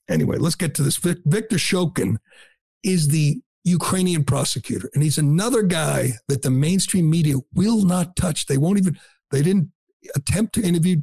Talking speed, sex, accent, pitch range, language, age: 165 wpm, male, American, 130-170 Hz, English, 60-79